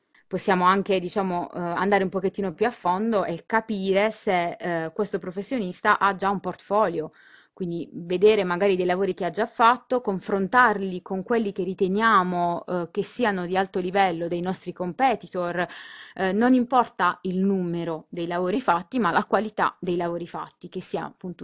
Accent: native